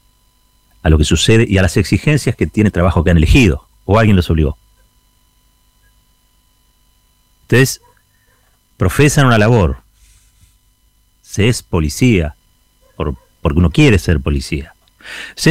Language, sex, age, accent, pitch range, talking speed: Spanish, male, 40-59, Argentinian, 85-115 Hz, 130 wpm